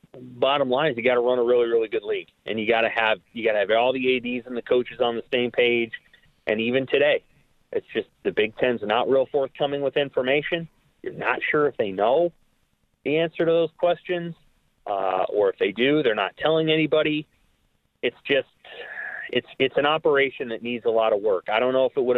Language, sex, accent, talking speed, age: English, male, American, 220 wpm, 30-49